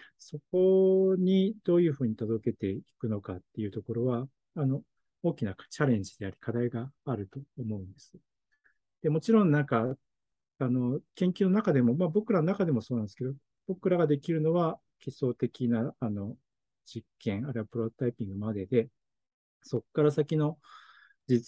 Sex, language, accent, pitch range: male, Japanese, native, 115-150 Hz